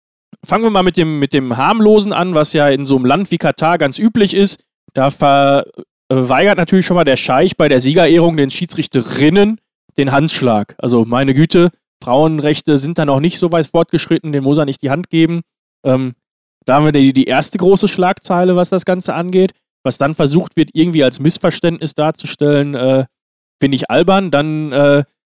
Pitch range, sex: 140-185 Hz, male